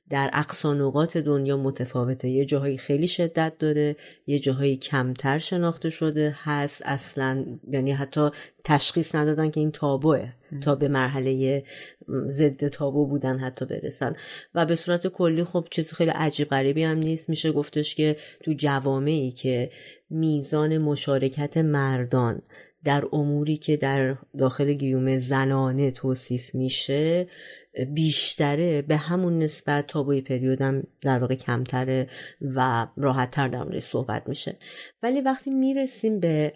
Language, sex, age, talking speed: Persian, female, 30-49, 130 wpm